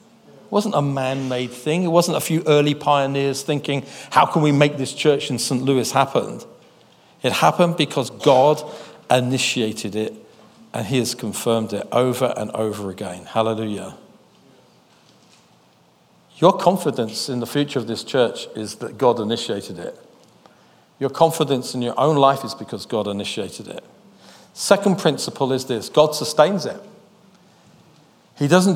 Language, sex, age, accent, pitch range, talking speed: English, male, 50-69, British, 130-175 Hz, 150 wpm